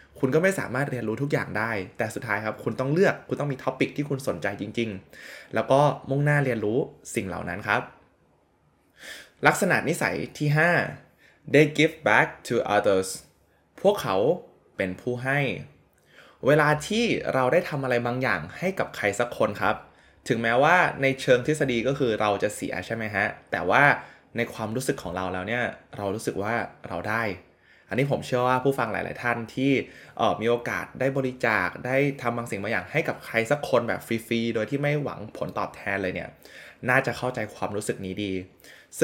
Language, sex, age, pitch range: Thai, male, 20-39, 105-140 Hz